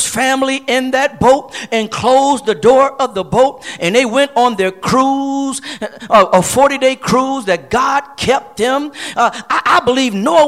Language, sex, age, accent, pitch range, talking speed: English, male, 50-69, American, 220-285 Hz, 170 wpm